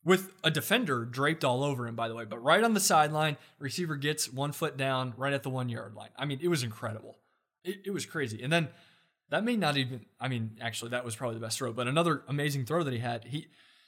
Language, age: English, 20-39